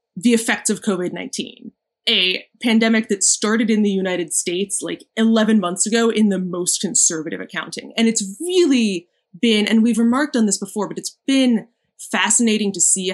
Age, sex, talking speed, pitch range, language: 20-39, female, 170 wpm, 185-230 Hz, English